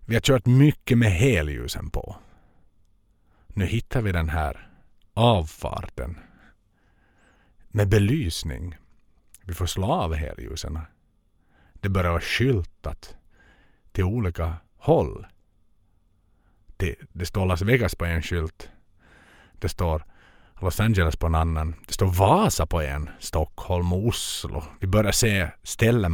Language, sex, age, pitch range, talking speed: Swedish, male, 50-69, 80-105 Hz, 125 wpm